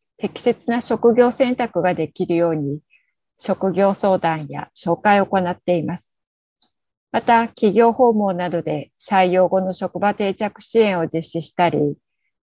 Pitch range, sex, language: 175-215 Hz, female, Japanese